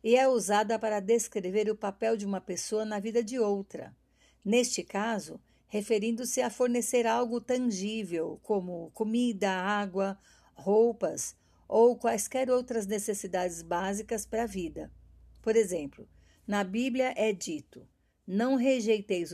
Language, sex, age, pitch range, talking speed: Portuguese, female, 50-69, 195-235 Hz, 125 wpm